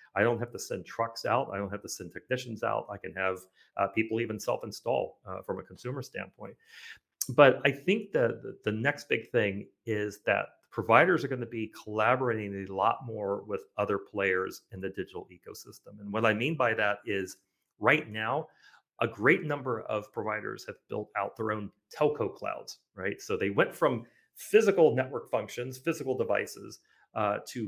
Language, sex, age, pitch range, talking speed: English, male, 40-59, 100-140 Hz, 185 wpm